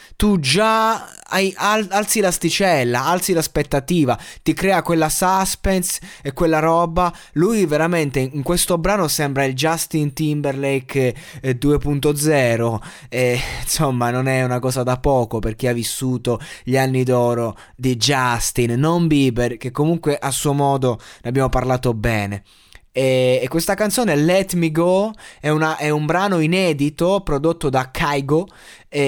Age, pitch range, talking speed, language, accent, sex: 20-39, 130-170 Hz, 140 wpm, Italian, native, male